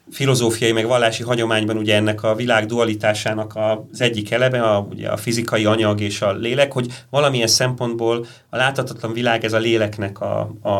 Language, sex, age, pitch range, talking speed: Hungarian, male, 30-49, 110-130 Hz, 165 wpm